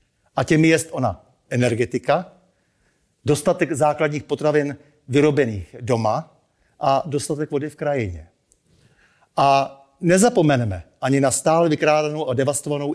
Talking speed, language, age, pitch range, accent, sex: 105 wpm, Czech, 60-79, 130-165 Hz, native, male